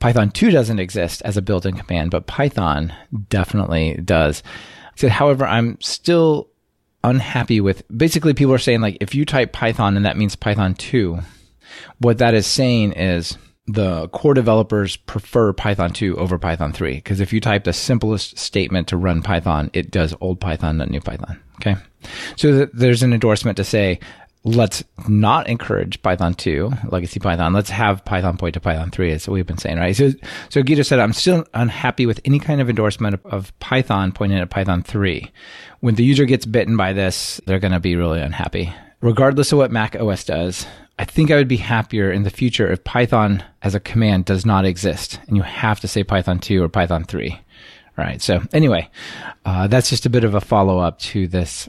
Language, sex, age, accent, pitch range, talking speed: English, male, 30-49, American, 90-115 Hz, 195 wpm